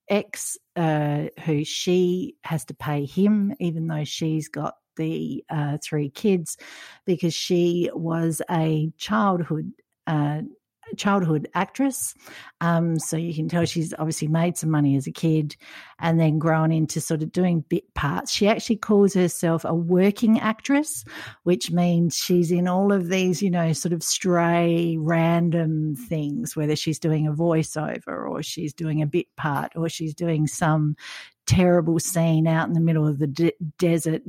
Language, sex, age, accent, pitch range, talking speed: English, female, 60-79, Australian, 155-200 Hz, 160 wpm